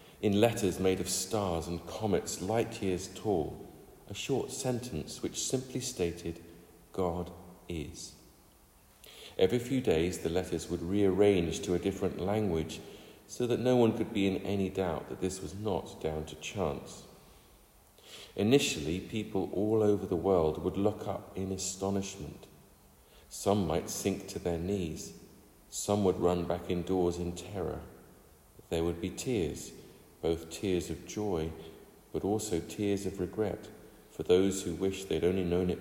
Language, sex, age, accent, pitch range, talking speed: English, male, 50-69, British, 85-100 Hz, 150 wpm